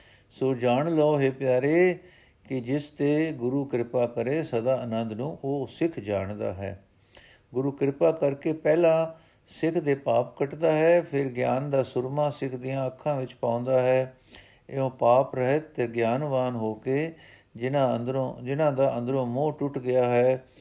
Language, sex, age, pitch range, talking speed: Punjabi, male, 50-69, 125-165 Hz, 155 wpm